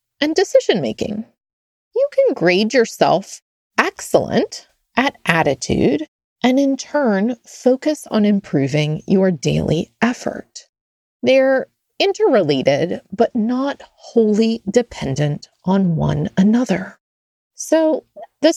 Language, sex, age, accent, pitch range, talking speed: English, female, 30-49, American, 205-300 Hz, 95 wpm